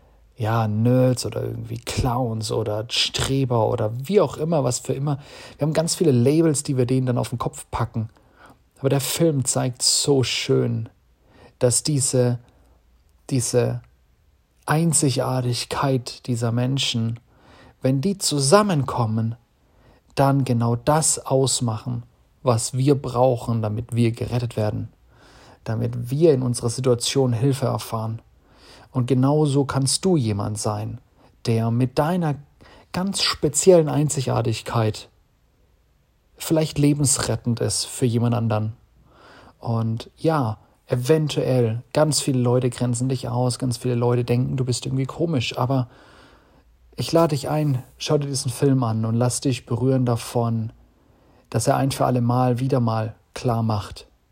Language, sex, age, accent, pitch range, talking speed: German, male, 40-59, German, 115-135 Hz, 135 wpm